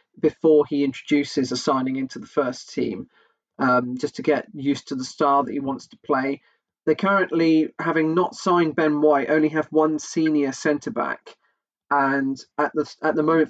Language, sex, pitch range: English, male, 145-170 Hz